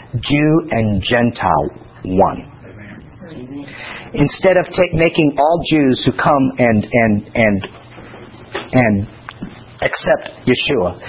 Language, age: English, 50-69